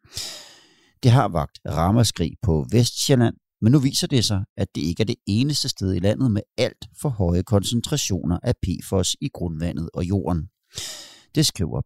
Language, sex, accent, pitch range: Danish, male, native, 85-125 Hz